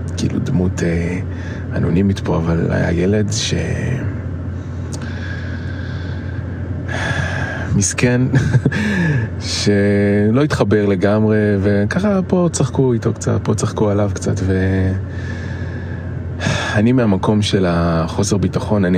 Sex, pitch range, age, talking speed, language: male, 90-110 Hz, 20-39, 90 wpm, Hebrew